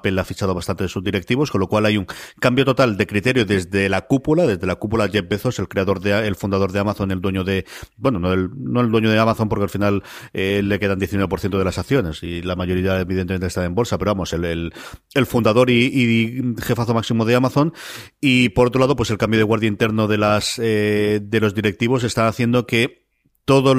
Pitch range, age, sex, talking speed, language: 100-125 Hz, 40-59, male, 230 wpm, Spanish